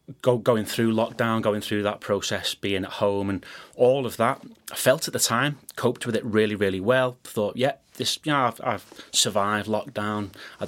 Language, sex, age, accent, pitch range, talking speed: English, male, 30-49, British, 100-120 Hz, 210 wpm